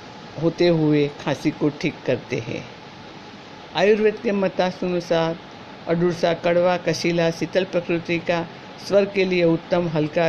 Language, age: Hindi, 60-79